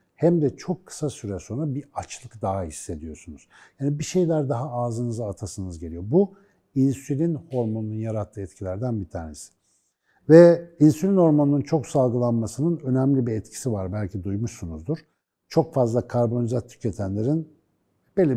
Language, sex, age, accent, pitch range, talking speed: Turkish, male, 60-79, native, 105-145 Hz, 130 wpm